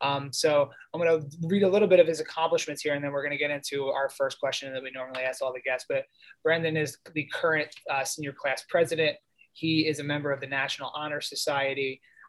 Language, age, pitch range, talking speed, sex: English, 20-39, 140-165 Hz, 235 wpm, male